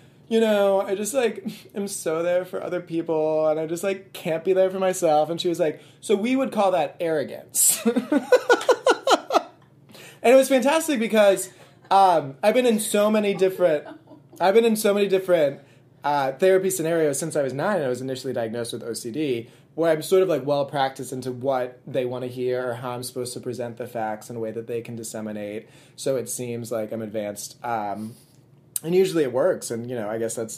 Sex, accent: male, American